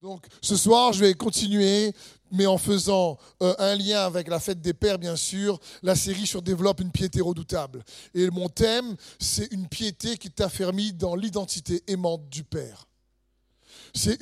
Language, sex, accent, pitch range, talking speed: French, male, French, 175-230 Hz, 170 wpm